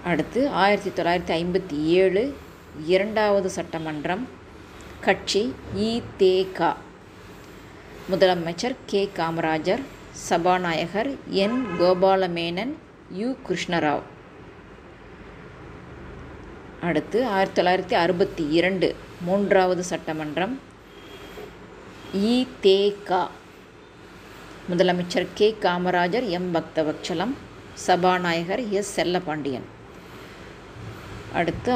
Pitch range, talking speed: 170-195 Hz, 65 wpm